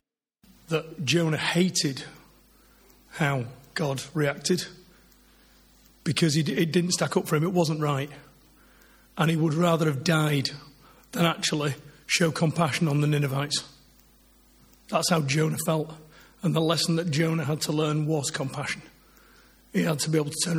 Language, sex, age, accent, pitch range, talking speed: English, male, 40-59, British, 145-170 Hz, 145 wpm